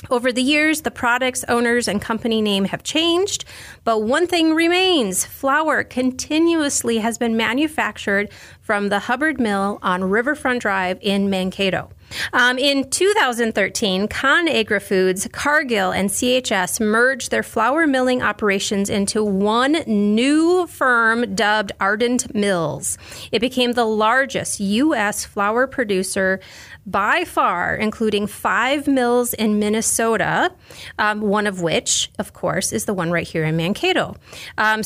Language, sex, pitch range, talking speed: English, female, 195-255 Hz, 135 wpm